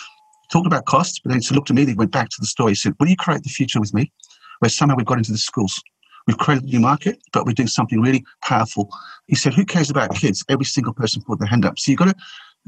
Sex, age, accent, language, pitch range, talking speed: male, 50-69, British, English, 110-145 Hz, 285 wpm